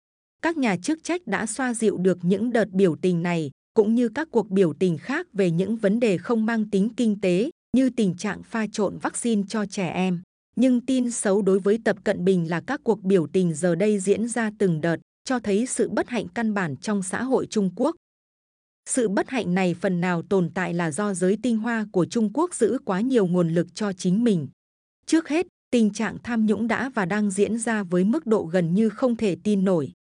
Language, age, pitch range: Vietnamese, 20-39, 185-230 Hz